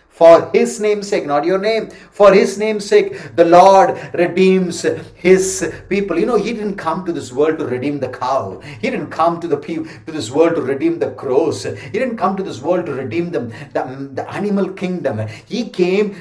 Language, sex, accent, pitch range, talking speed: English, male, Indian, 140-195 Hz, 205 wpm